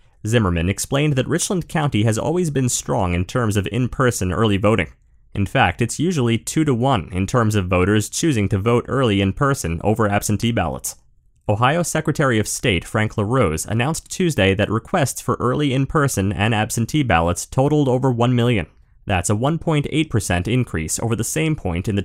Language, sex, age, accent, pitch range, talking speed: English, male, 30-49, American, 100-135 Hz, 175 wpm